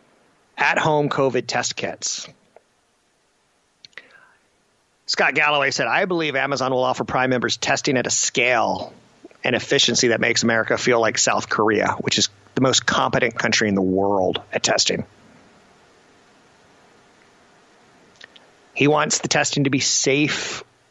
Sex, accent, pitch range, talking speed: male, American, 120-145 Hz, 130 wpm